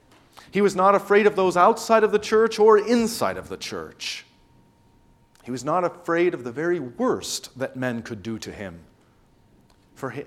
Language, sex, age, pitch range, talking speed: English, male, 40-59, 115-180 Hz, 175 wpm